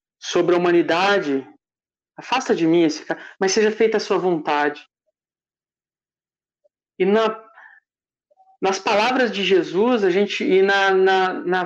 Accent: Brazilian